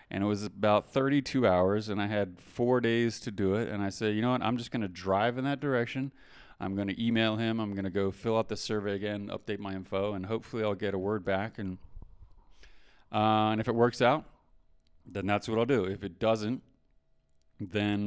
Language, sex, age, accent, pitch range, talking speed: English, male, 30-49, American, 95-115 Hz, 215 wpm